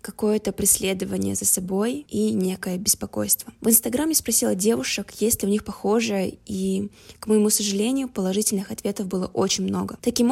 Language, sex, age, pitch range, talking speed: Russian, female, 20-39, 195-230 Hz, 150 wpm